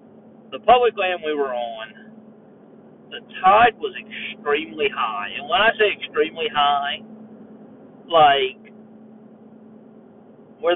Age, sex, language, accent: 50-69, male, English, American